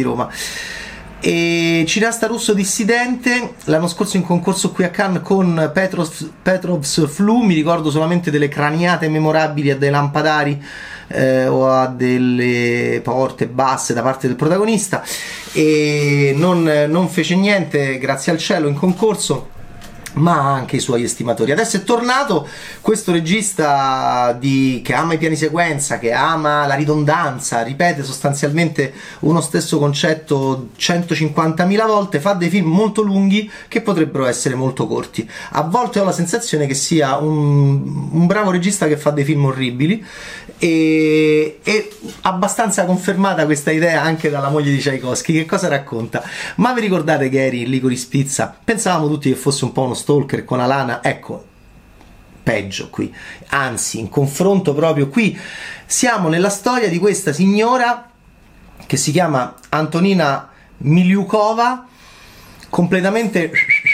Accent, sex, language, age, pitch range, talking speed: native, male, Italian, 30-49, 140-195 Hz, 140 wpm